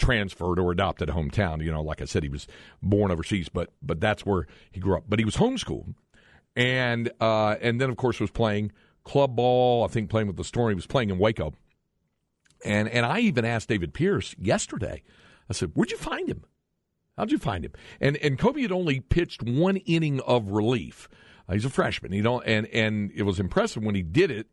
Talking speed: 220 wpm